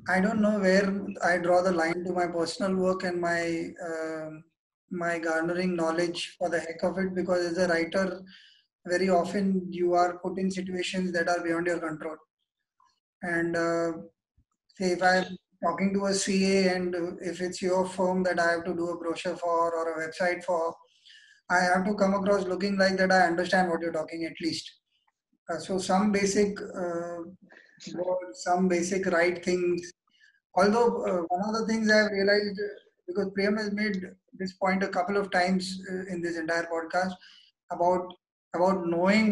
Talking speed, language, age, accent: 180 wpm, English, 20-39, Indian